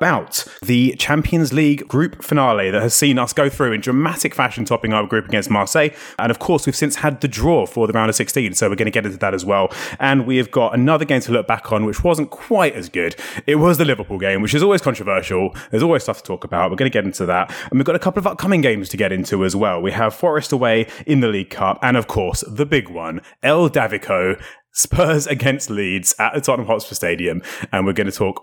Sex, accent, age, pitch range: male, British, 30-49, 105-150 Hz